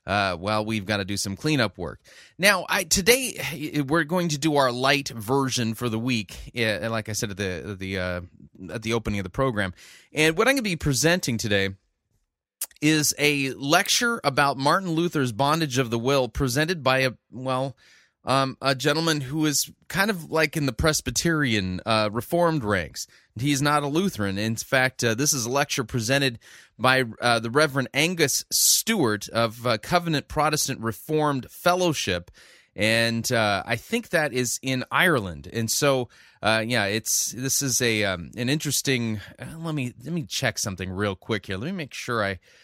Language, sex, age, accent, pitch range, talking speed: English, male, 30-49, American, 110-150 Hz, 180 wpm